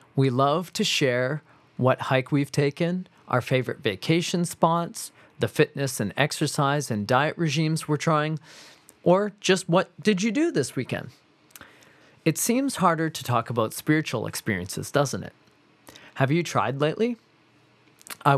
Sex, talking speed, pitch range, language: male, 145 wpm, 125-165 Hz, English